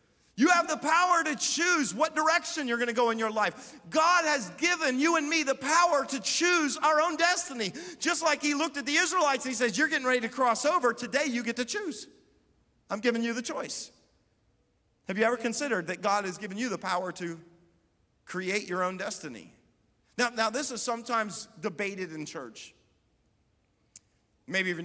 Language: English